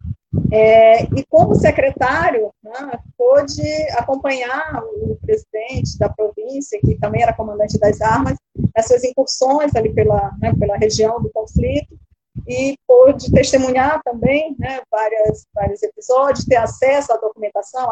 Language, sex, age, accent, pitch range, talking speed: Portuguese, female, 20-39, Brazilian, 225-280 Hz, 125 wpm